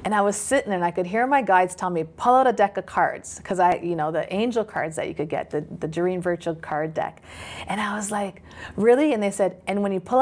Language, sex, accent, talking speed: English, female, American, 275 wpm